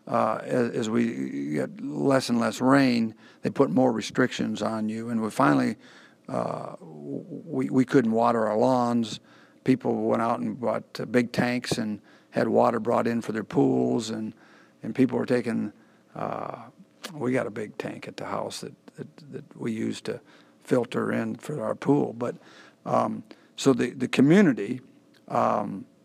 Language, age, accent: English, 50-69, American